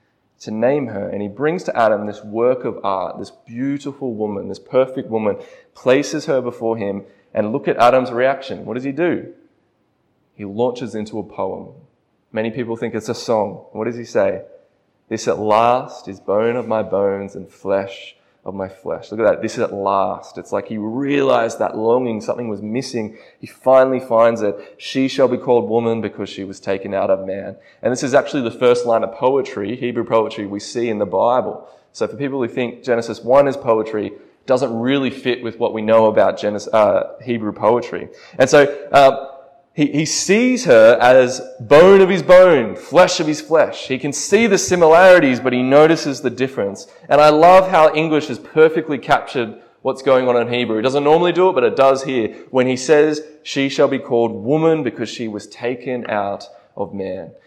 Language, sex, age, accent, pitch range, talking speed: English, male, 20-39, Australian, 110-140 Hz, 200 wpm